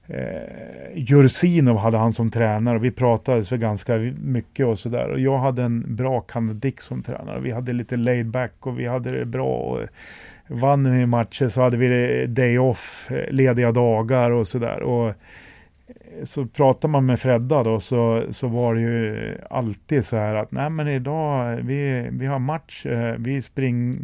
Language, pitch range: Swedish, 110-135 Hz